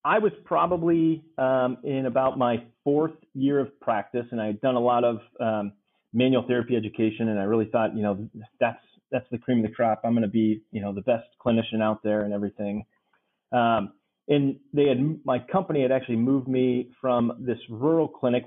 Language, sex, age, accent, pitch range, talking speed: English, male, 30-49, American, 110-130 Hz, 200 wpm